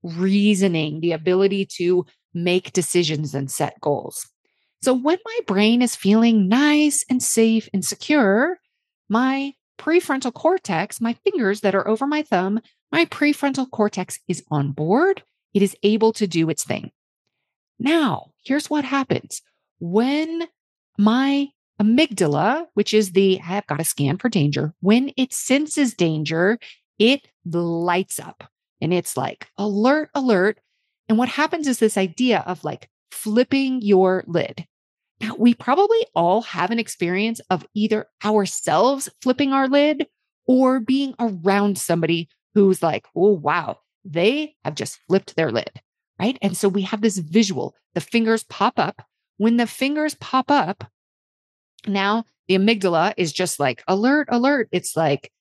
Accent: American